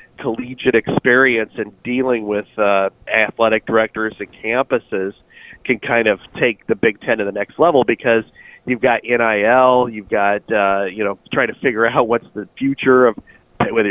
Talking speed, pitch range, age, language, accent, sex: 170 wpm, 110-130 Hz, 40-59, English, American, male